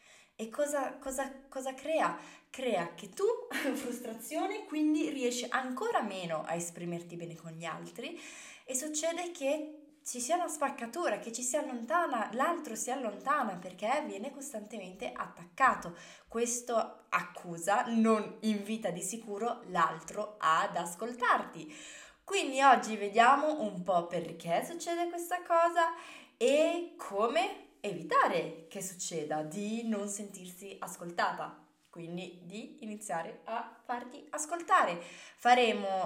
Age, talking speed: 20-39, 120 wpm